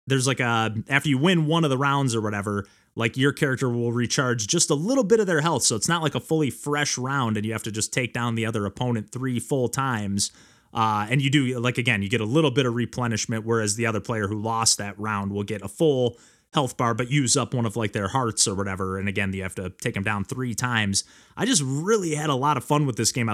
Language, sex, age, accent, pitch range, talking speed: English, male, 30-49, American, 110-135 Hz, 265 wpm